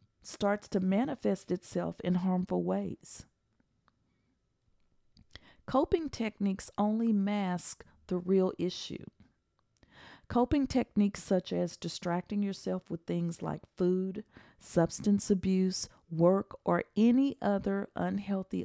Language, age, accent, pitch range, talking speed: English, 40-59, American, 170-205 Hz, 100 wpm